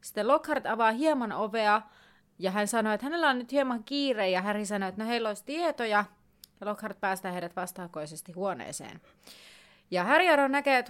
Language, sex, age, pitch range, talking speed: Finnish, female, 30-49, 190-245 Hz, 175 wpm